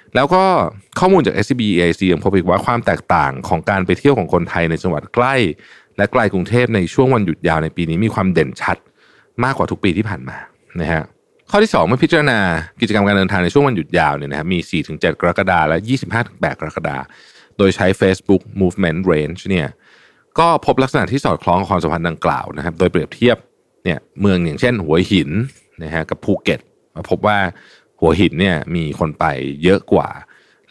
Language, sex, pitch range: Thai, male, 85-115 Hz